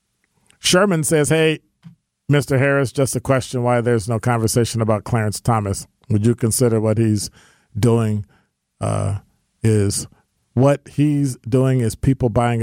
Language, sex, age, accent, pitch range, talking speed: English, male, 40-59, American, 110-135 Hz, 140 wpm